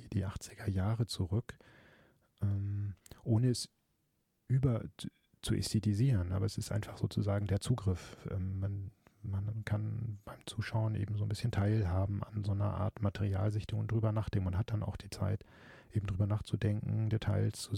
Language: German